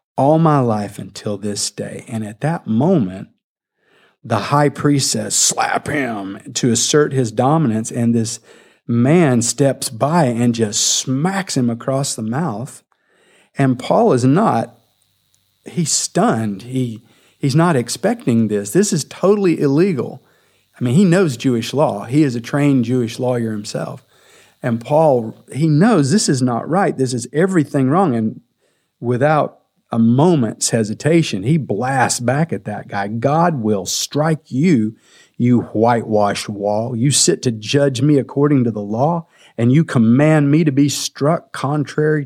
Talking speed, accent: 150 wpm, American